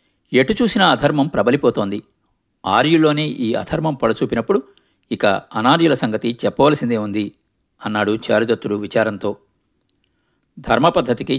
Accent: native